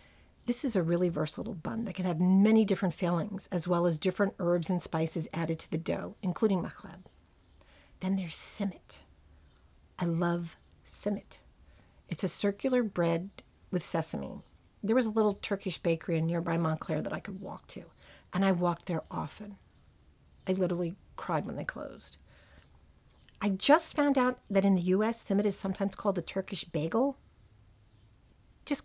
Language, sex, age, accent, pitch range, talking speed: English, female, 50-69, American, 160-210 Hz, 160 wpm